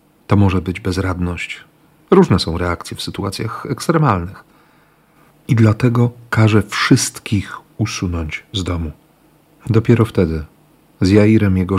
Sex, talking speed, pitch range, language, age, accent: male, 110 wpm, 90-125 Hz, Polish, 40-59, native